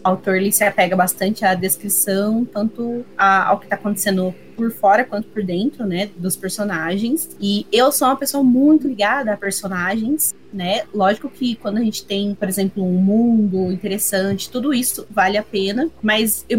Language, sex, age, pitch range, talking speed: Portuguese, female, 20-39, 200-245 Hz, 175 wpm